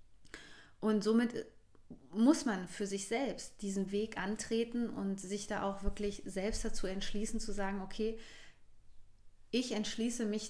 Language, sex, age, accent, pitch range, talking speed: German, female, 30-49, German, 195-230 Hz, 135 wpm